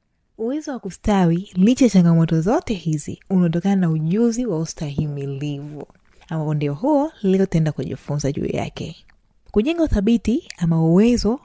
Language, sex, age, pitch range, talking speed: Swahili, female, 20-39, 165-215 Hz, 125 wpm